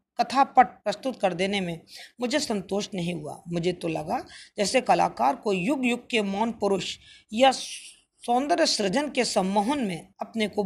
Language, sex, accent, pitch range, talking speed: Hindi, female, native, 185-245 Hz, 160 wpm